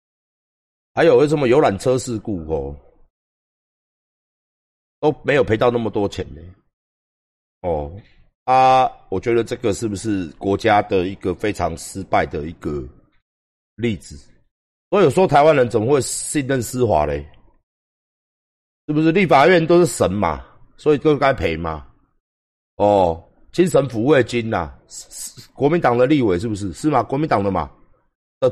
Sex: male